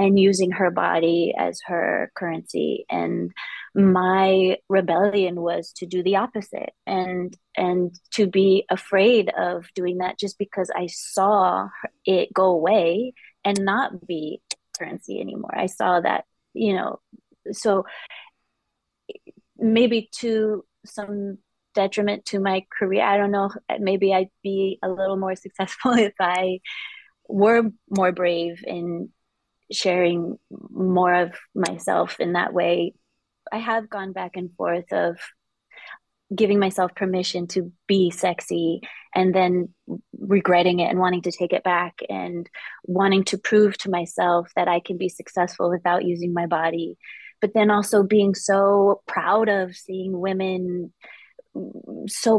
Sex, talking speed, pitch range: female, 135 wpm, 180-205 Hz